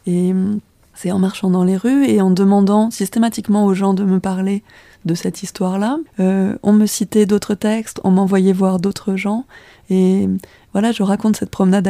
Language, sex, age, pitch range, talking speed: French, female, 20-39, 190-210 Hz, 180 wpm